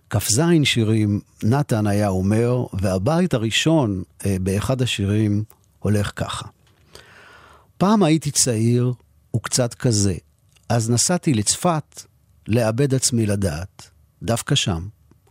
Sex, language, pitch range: male, Hebrew, 100-140 Hz